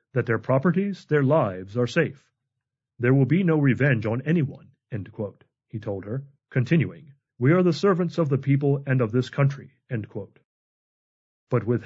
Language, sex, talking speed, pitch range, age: English, male, 175 wpm, 120-155 Hz, 40-59